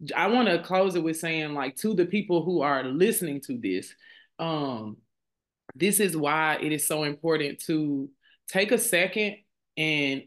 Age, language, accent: 20-39, English, American